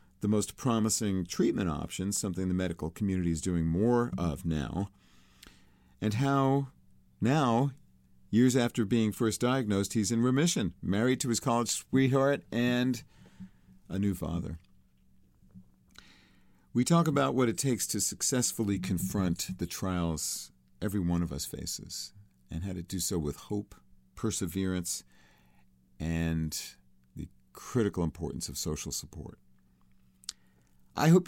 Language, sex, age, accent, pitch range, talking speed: English, male, 50-69, American, 80-120 Hz, 130 wpm